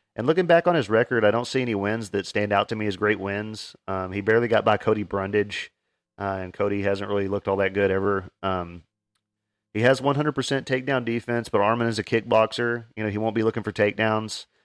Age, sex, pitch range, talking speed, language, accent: 40-59, male, 100-115 Hz, 225 wpm, English, American